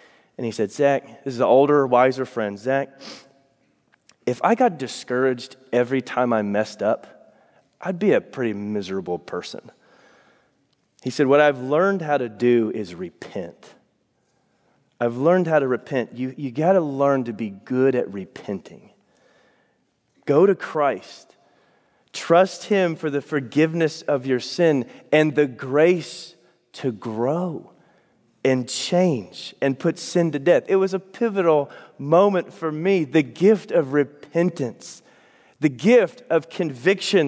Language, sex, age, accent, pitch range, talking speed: English, male, 30-49, American, 135-195 Hz, 140 wpm